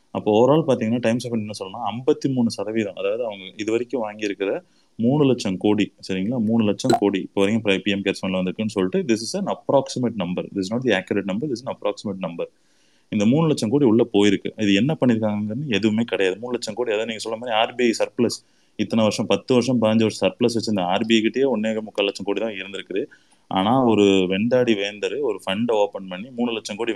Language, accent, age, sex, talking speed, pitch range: Tamil, native, 30-49, male, 200 wpm, 100-120 Hz